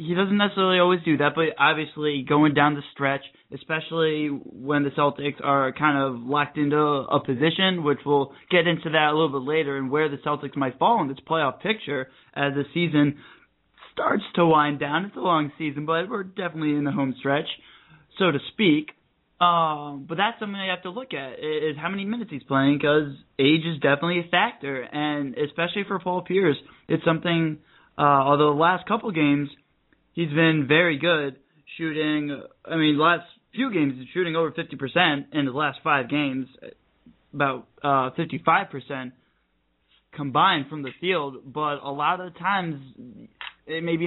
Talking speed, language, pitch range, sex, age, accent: 175 wpm, English, 140-170 Hz, male, 20-39, American